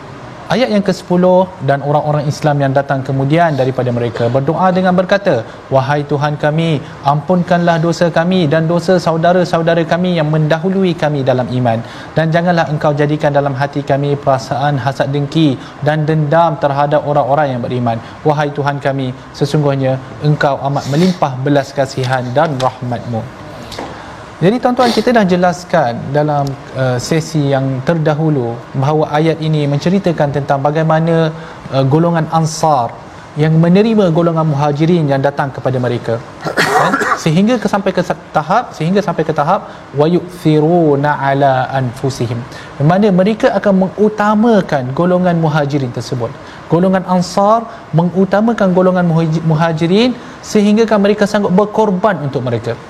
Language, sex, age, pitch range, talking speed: Malayalam, male, 20-39, 140-175 Hz, 130 wpm